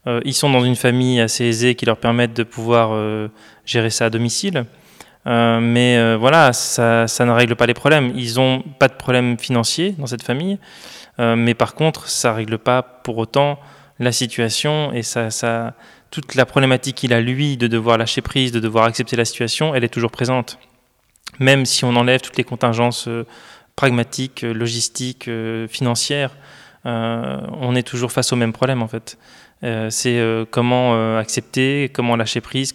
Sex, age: male, 20-39